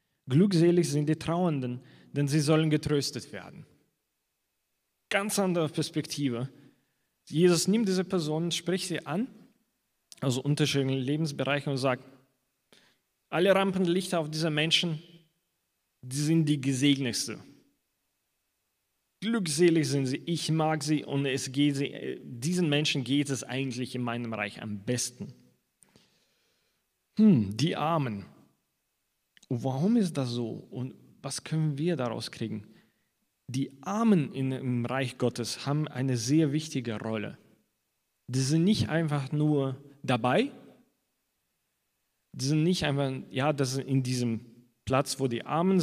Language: German